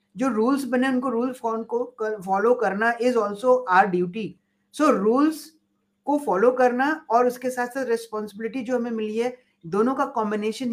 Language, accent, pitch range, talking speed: Hindi, native, 205-250 Hz, 170 wpm